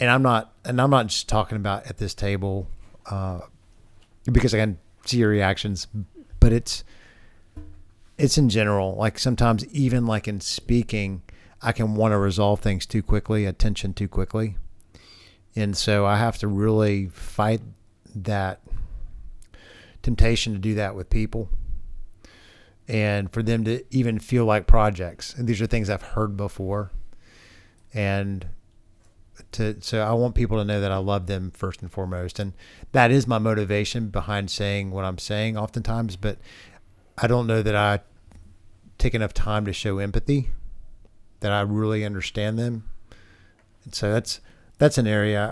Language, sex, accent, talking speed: English, male, American, 155 wpm